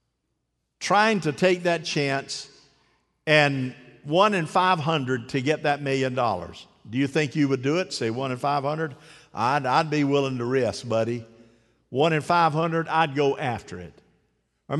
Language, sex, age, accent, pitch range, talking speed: English, male, 50-69, American, 145-195 Hz, 160 wpm